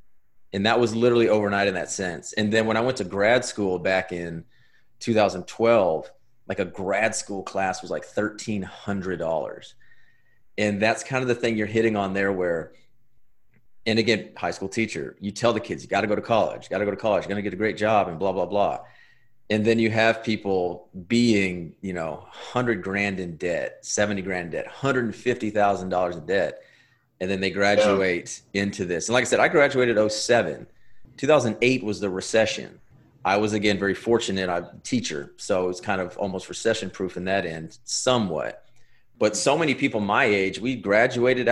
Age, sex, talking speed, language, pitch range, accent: 30-49, male, 190 wpm, English, 95-125 Hz, American